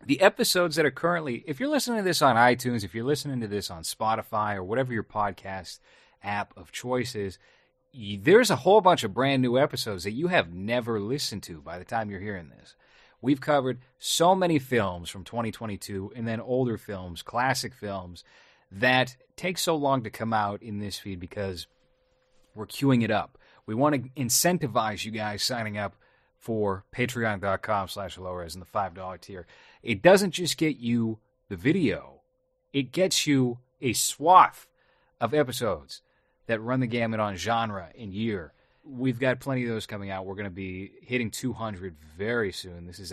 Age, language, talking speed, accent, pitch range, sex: 30-49, English, 180 wpm, American, 100-140 Hz, male